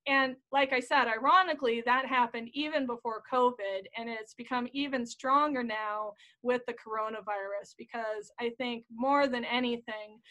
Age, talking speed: 20-39, 145 wpm